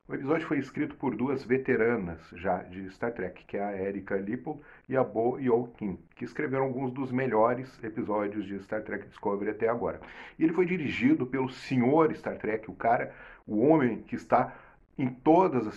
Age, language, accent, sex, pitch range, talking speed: 40-59, Portuguese, Brazilian, male, 100-130 Hz, 185 wpm